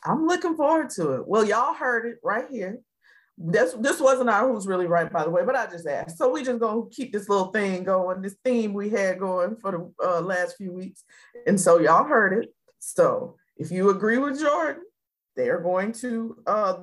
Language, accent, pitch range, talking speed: English, American, 165-230 Hz, 220 wpm